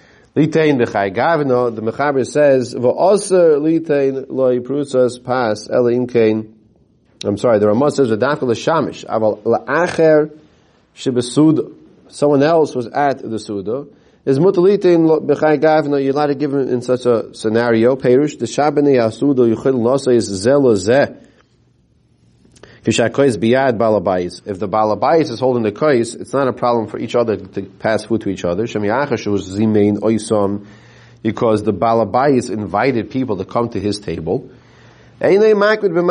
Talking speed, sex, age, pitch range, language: 130 wpm, male, 30-49, 110-145 Hz, English